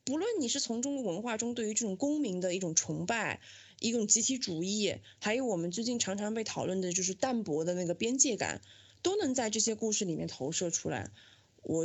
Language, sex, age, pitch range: Chinese, female, 20-39, 180-260 Hz